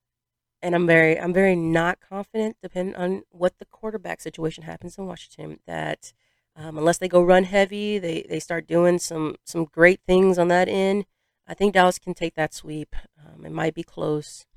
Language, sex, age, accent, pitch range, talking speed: English, female, 30-49, American, 155-195 Hz, 190 wpm